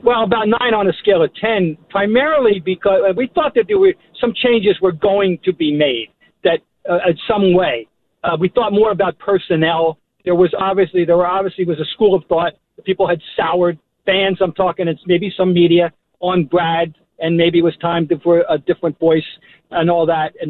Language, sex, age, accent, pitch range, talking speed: English, male, 50-69, American, 170-235 Hz, 200 wpm